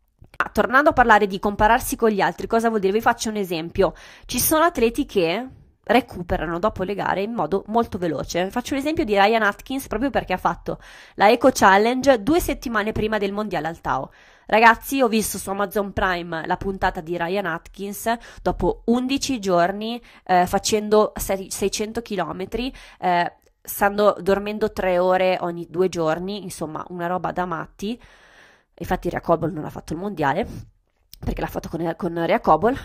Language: Italian